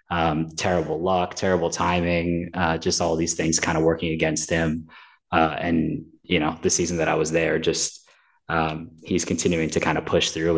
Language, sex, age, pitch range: English, male, 20-39, 85-95 Hz